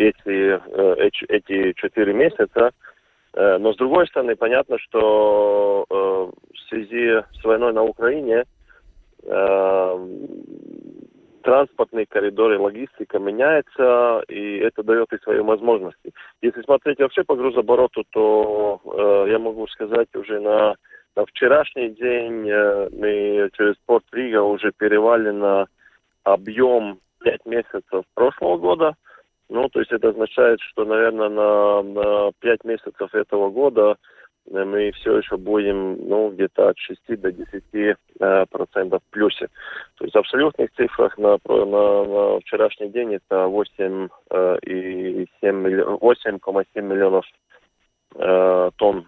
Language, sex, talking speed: Russian, male, 110 wpm